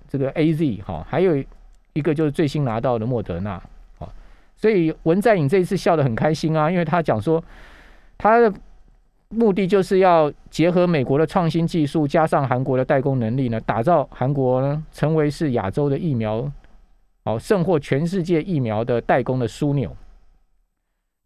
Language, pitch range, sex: Chinese, 120-170 Hz, male